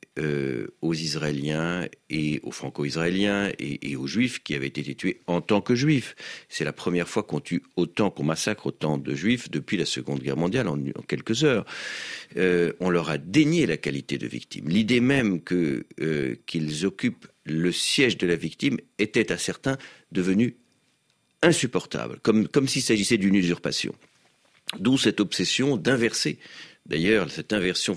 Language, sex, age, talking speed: French, male, 50-69, 165 wpm